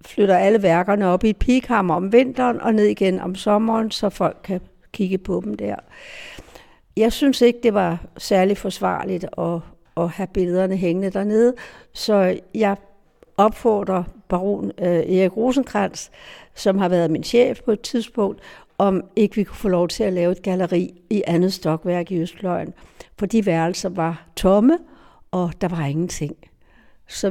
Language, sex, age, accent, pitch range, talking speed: Danish, female, 60-79, native, 175-215 Hz, 160 wpm